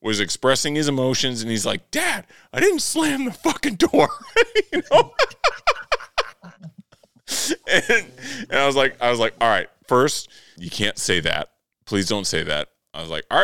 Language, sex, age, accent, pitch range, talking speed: English, male, 30-49, American, 90-120 Hz, 180 wpm